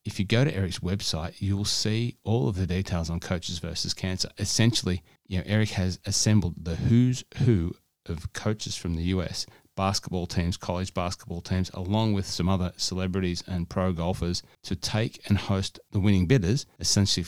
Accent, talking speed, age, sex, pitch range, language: Australian, 175 wpm, 30-49, male, 90-105 Hz, English